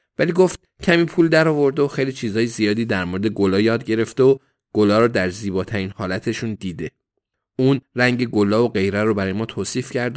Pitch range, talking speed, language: 100-130 Hz, 190 wpm, Persian